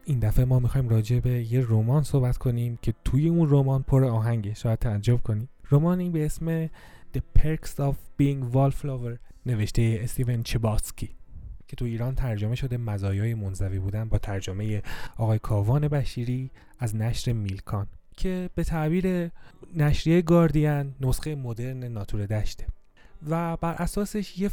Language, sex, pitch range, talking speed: Persian, male, 115-140 Hz, 145 wpm